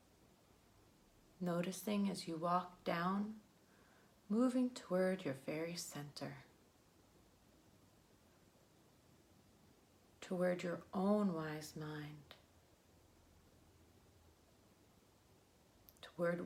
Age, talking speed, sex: 40-59, 60 wpm, female